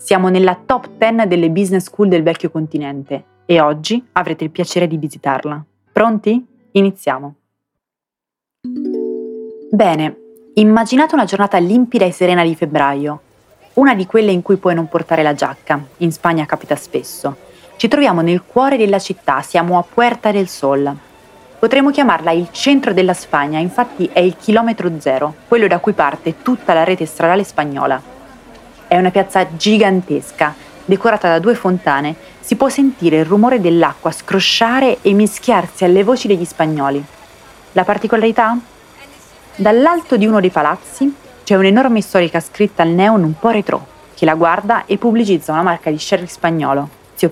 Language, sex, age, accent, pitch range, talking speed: Italian, female, 30-49, native, 160-220 Hz, 155 wpm